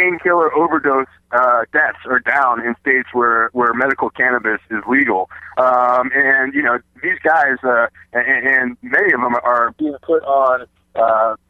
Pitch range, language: 120-150 Hz, English